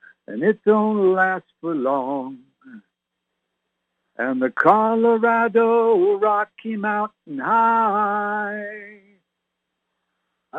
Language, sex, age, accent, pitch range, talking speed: English, male, 60-79, American, 175-225 Hz, 70 wpm